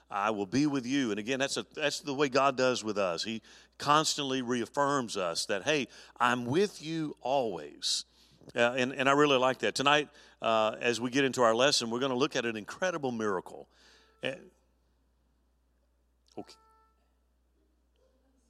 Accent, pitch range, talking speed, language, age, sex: American, 120-150 Hz, 165 wpm, English, 50-69, male